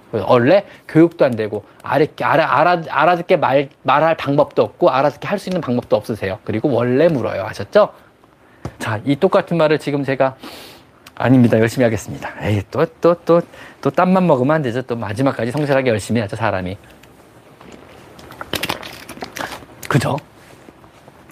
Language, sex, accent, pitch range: Korean, male, native, 135-210 Hz